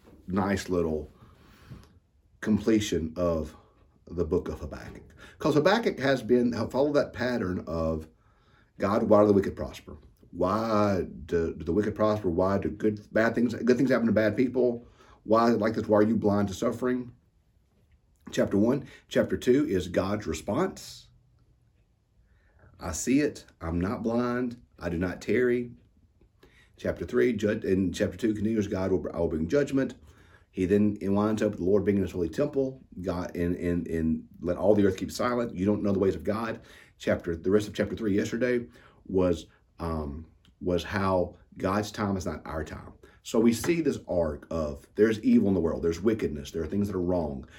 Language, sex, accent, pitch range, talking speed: English, male, American, 90-115 Hz, 180 wpm